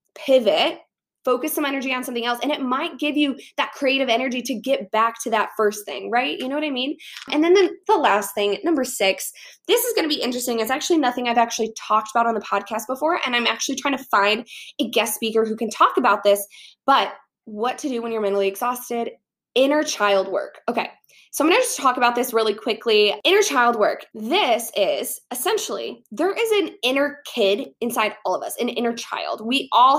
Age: 20-39